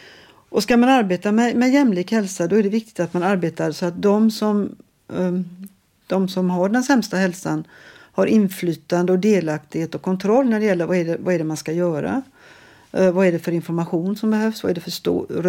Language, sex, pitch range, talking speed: Swedish, female, 175-210 Hz, 215 wpm